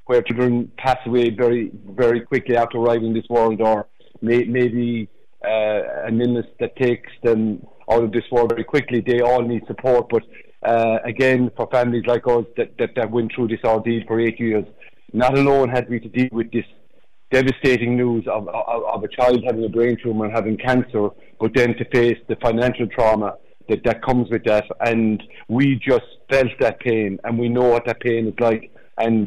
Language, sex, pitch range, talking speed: English, male, 110-125 Hz, 200 wpm